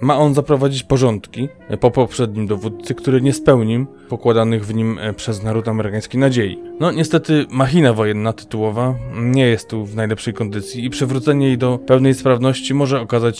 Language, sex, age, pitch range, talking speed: Polish, male, 20-39, 110-130 Hz, 160 wpm